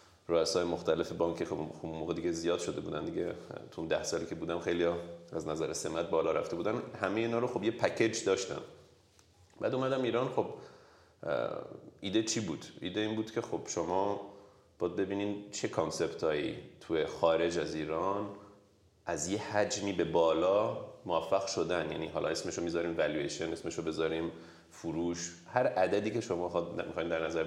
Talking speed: 160 wpm